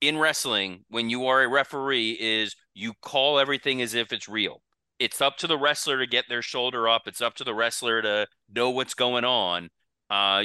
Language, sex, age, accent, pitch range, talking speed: English, male, 30-49, American, 105-125 Hz, 205 wpm